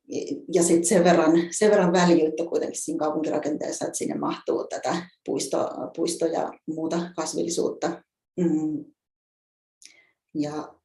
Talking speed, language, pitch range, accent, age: 105 wpm, Finnish, 155-190 Hz, native, 30-49